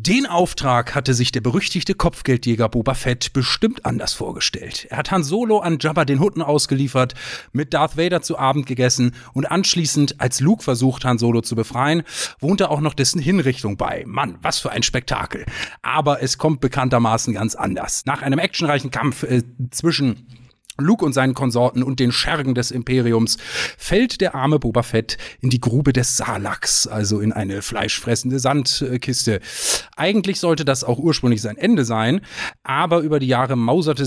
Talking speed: 170 wpm